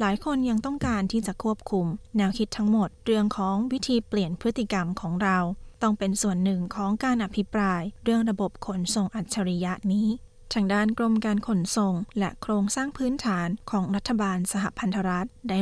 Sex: female